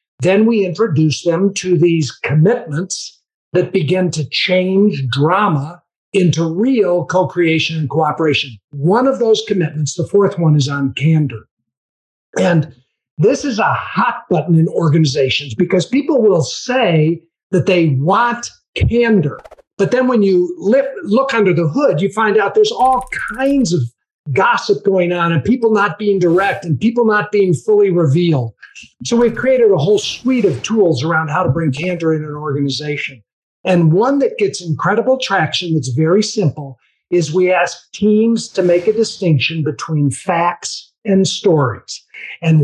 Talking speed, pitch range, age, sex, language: 155 wpm, 155-205 Hz, 50-69, male, English